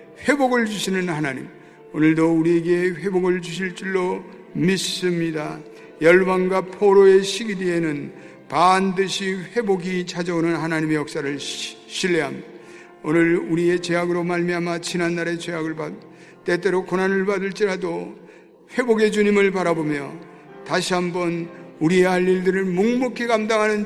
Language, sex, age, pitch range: Korean, male, 50-69, 165-205 Hz